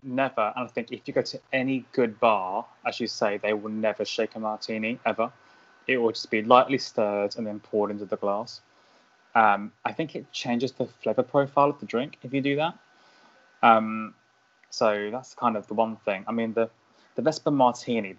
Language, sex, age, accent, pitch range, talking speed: English, male, 20-39, British, 110-130 Hz, 205 wpm